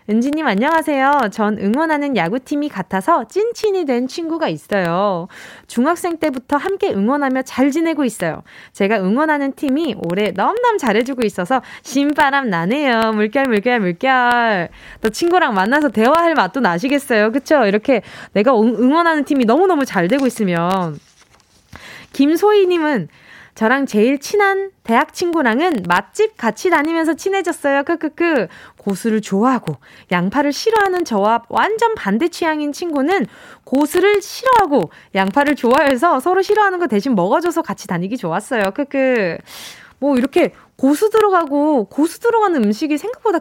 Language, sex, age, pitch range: Korean, female, 20-39, 220-330 Hz